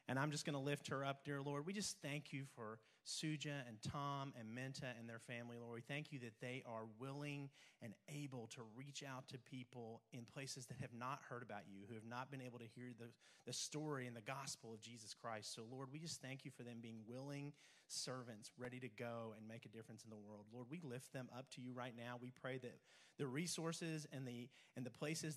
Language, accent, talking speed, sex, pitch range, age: English, American, 240 wpm, male, 110-130 Hz, 30-49